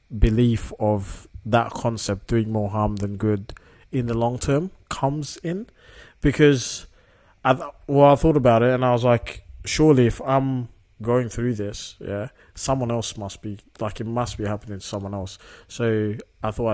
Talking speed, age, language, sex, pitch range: 170 wpm, 20-39, English, male, 105-125 Hz